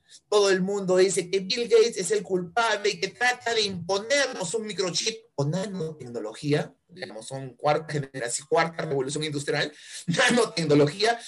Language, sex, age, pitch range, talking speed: Spanish, male, 30-49, 150-210 Hz, 145 wpm